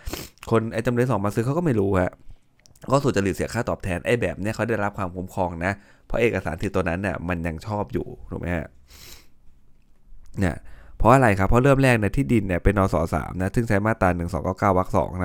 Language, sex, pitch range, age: Thai, male, 85-110 Hz, 20-39